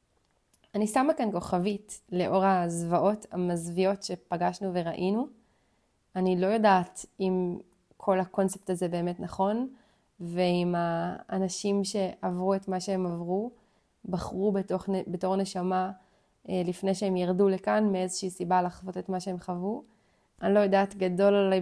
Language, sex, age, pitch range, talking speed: Hebrew, female, 20-39, 185-210 Hz, 125 wpm